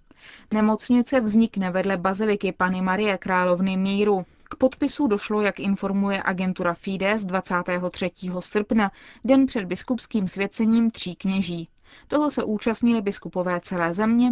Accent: native